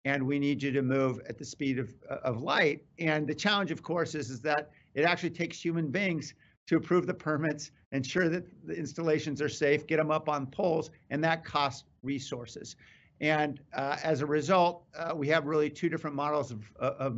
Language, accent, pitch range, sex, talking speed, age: English, American, 135-160 Hz, male, 205 wpm, 50-69